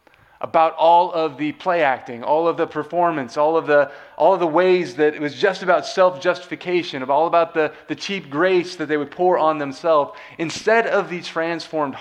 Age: 30-49